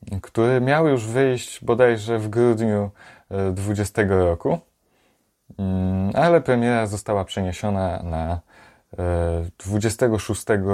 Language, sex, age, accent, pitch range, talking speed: Polish, male, 20-39, native, 90-110 Hz, 85 wpm